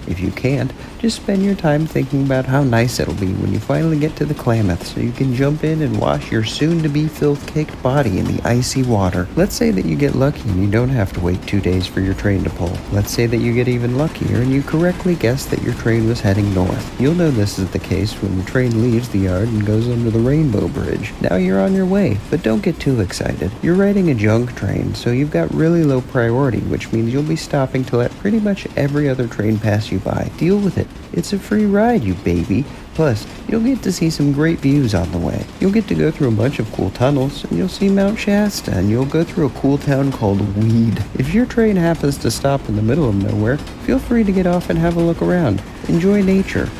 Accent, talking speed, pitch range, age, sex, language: American, 245 wpm, 105-160 Hz, 50-69, male, English